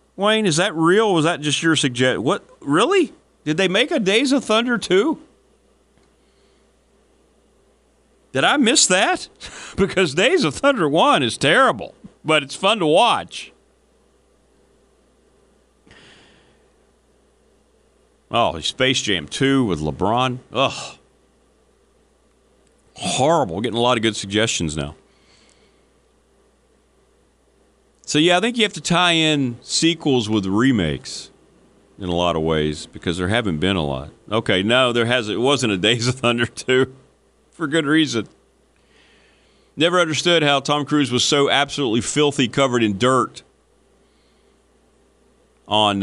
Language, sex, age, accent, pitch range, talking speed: English, male, 40-59, American, 120-170 Hz, 130 wpm